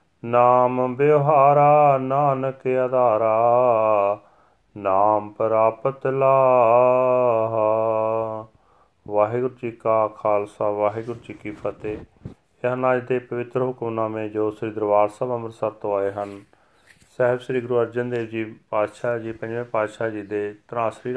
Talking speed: 115 wpm